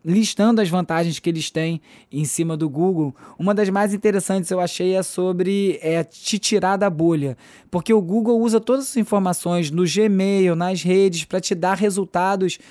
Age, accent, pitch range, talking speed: 20-39, Brazilian, 170-205 Hz, 180 wpm